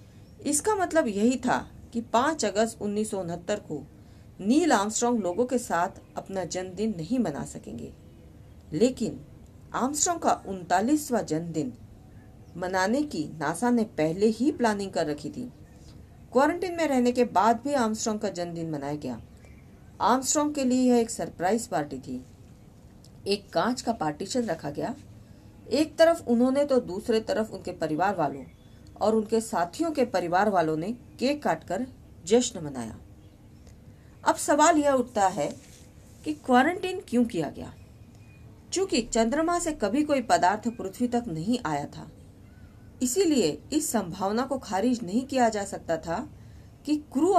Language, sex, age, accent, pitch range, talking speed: Hindi, female, 40-59, native, 175-255 Hz, 140 wpm